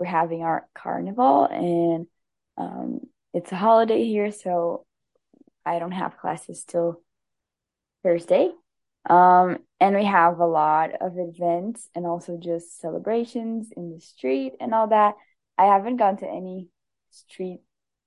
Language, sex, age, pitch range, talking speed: English, female, 10-29, 170-200 Hz, 135 wpm